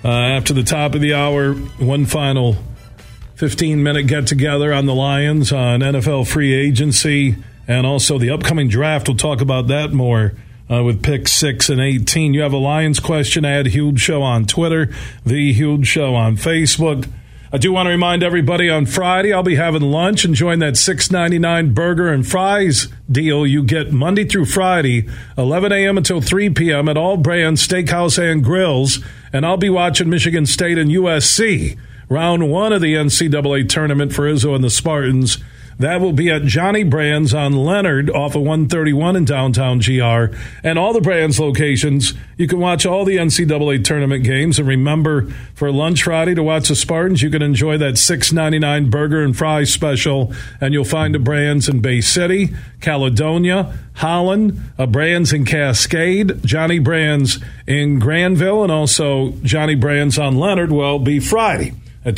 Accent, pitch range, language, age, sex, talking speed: American, 130-165 Hz, English, 40-59, male, 180 wpm